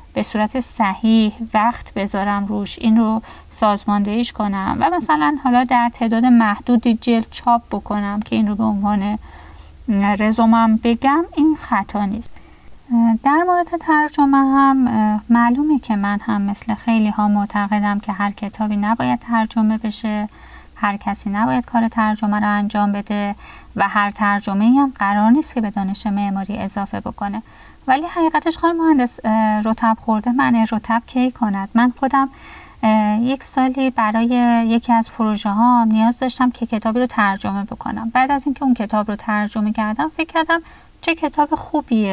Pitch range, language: 210-250 Hz, Persian